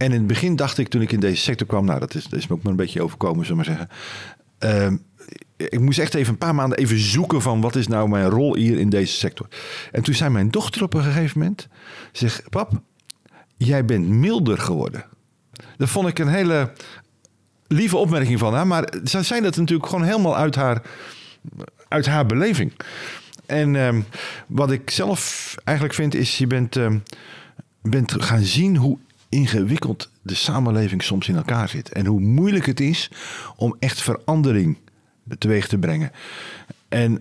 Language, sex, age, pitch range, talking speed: Dutch, male, 50-69, 110-150 Hz, 185 wpm